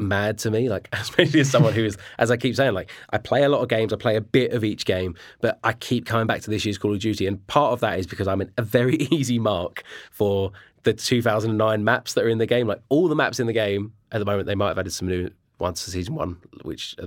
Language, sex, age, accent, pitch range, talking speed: English, male, 20-39, British, 105-125 Hz, 285 wpm